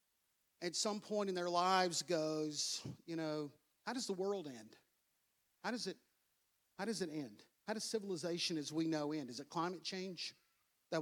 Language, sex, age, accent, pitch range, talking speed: English, male, 50-69, American, 165-215 Hz, 180 wpm